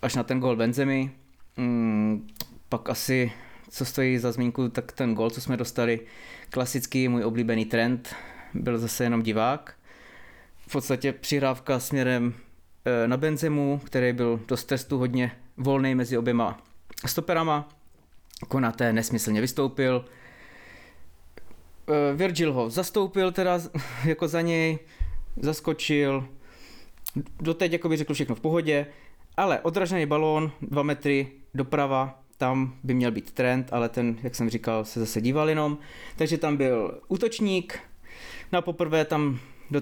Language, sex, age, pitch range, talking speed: Czech, male, 20-39, 120-145 Hz, 135 wpm